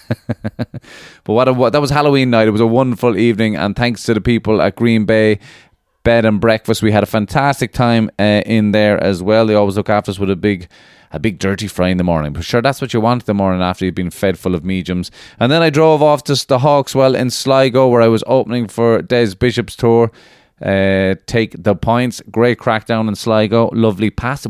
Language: English